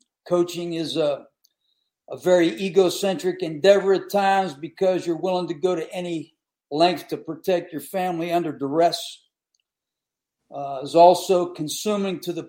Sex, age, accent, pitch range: male, 50-69, American, 175-195 Hz